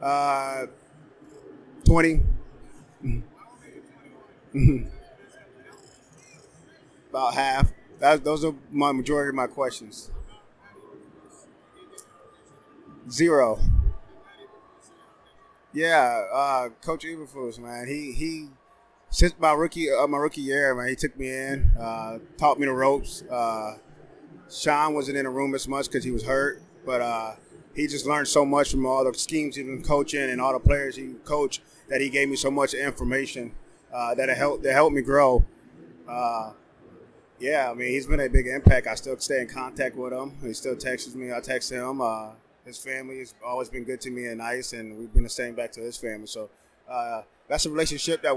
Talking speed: 165 wpm